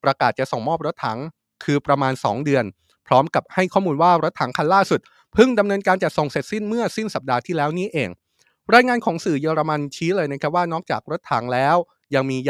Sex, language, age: male, Thai, 20-39